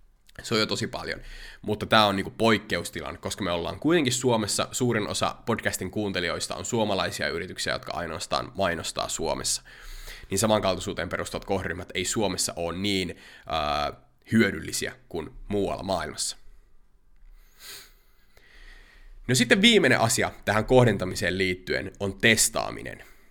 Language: Finnish